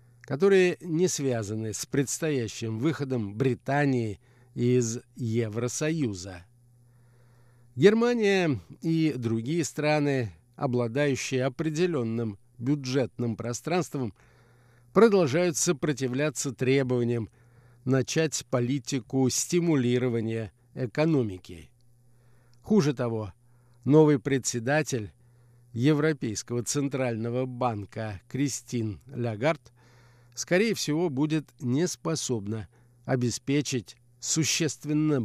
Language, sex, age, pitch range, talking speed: Russian, male, 50-69, 120-145 Hz, 70 wpm